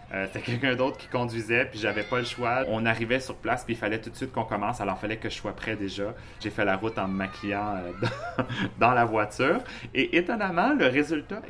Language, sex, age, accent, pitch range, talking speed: French, male, 30-49, Canadian, 100-120 Hz, 235 wpm